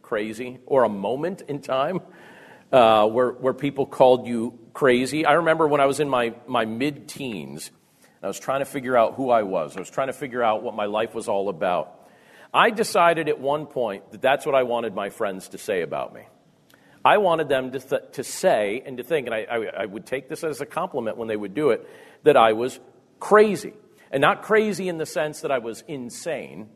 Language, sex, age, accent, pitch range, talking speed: English, male, 50-69, American, 120-165 Hz, 220 wpm